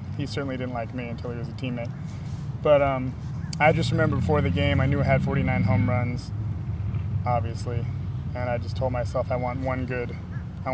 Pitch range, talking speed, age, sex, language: 115-130 Hz, 200 wpm, 20-39, male, English